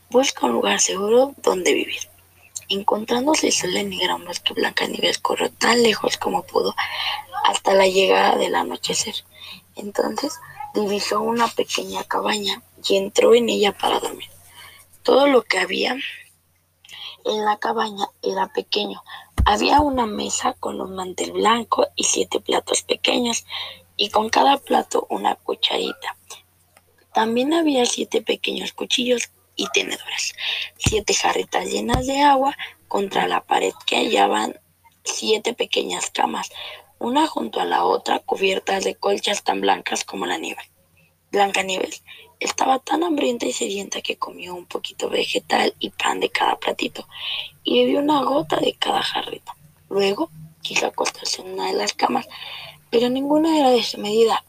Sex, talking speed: female, 145 wpm